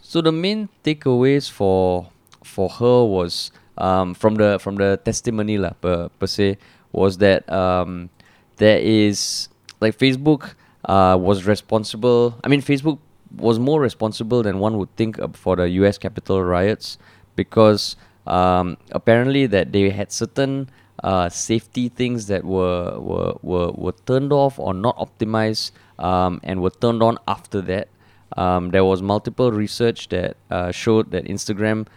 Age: 20-39